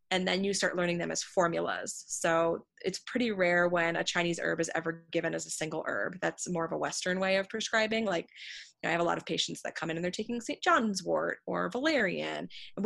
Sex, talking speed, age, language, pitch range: female, 235 wpm, 20-39, English, 165-185 Hz